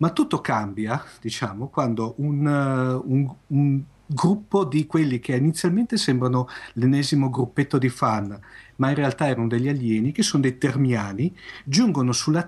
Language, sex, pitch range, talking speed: Italian, male, 120-150 Hz, 150 wpm